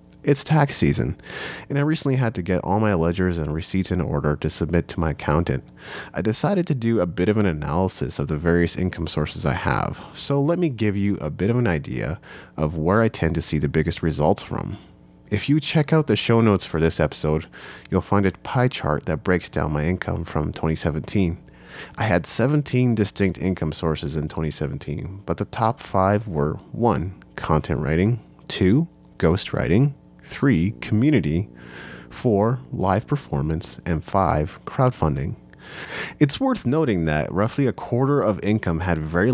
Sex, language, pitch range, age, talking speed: male, English, 80-110 Hz, 30-49, 180 wpm